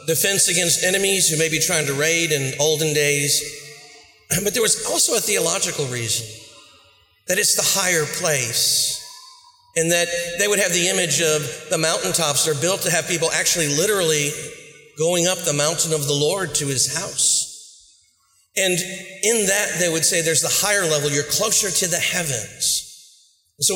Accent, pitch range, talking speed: American, 140-180 Hz, 170 wpm